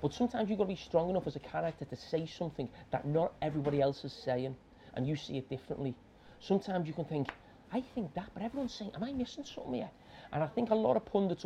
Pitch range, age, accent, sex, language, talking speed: 145-215 Hz, 30-49, British, male, English, 245 wpm